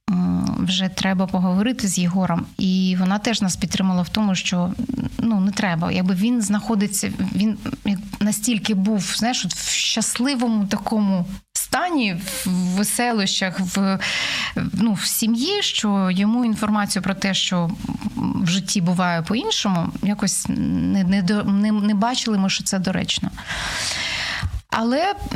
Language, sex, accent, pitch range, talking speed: Ukrainian, female, native, 190-230 Hz, 130 wpm